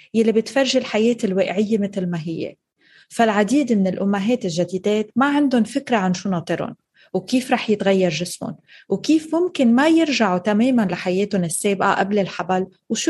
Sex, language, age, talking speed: female, Arabic, 30-49, 140 wpm